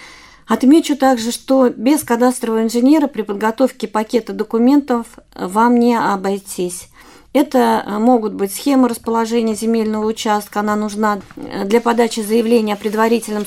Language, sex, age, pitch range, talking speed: Russian, female, 40-59, 205-240 Hz, 120 wpm